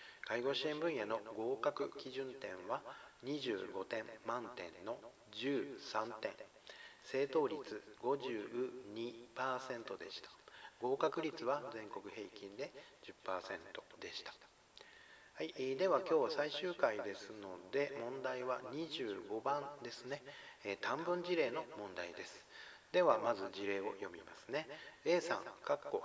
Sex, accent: male, native